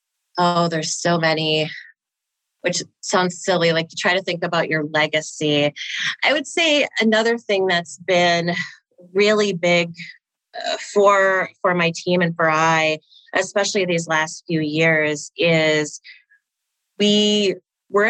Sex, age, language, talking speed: female, 30-49, English, 130 wpm